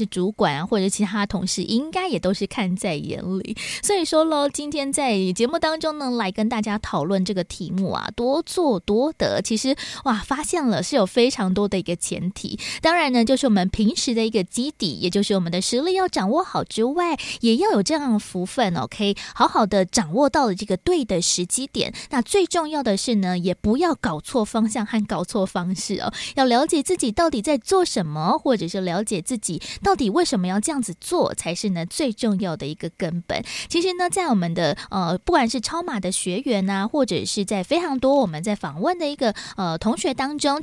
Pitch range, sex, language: 195-285 Hz, female, Chinese